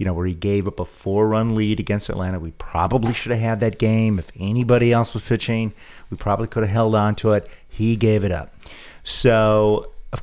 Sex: male